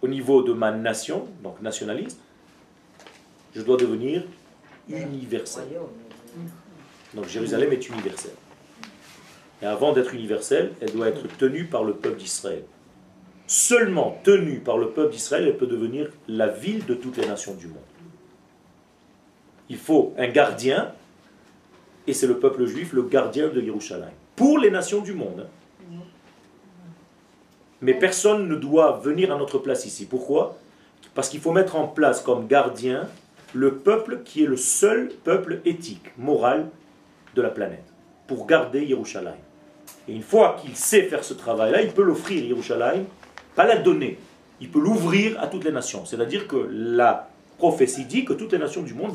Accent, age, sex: French, 40-59, male